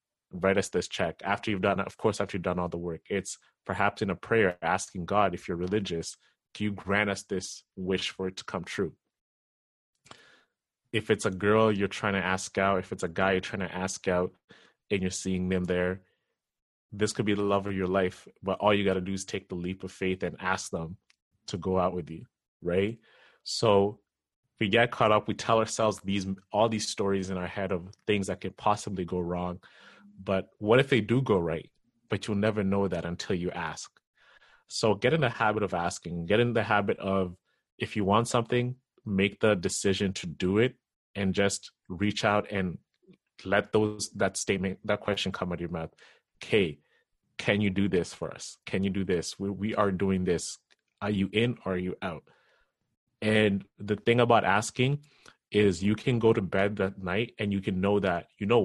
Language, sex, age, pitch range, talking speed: English, male, 30-49, 95-105 Hz, 210 wpm